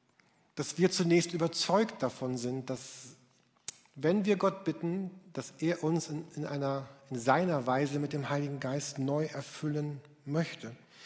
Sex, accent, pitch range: male, German, 140-180 Hz